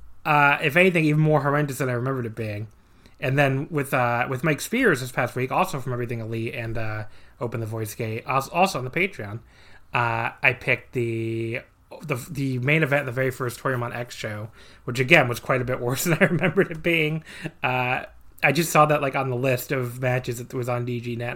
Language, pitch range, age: English, 115-145 Hz, 20-39